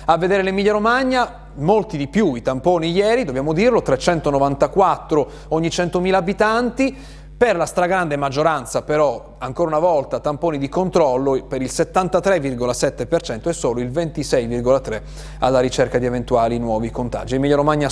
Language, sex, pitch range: Italian, male, 130-170 Hz